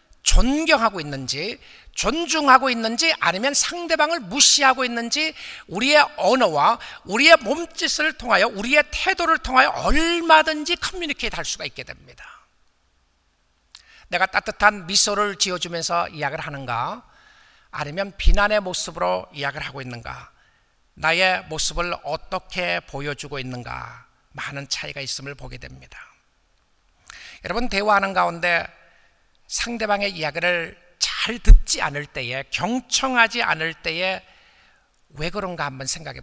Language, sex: Korean, male